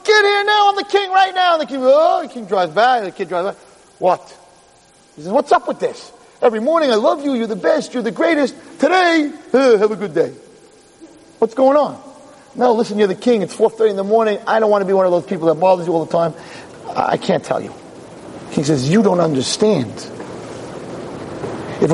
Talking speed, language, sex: 225 wpm, English, male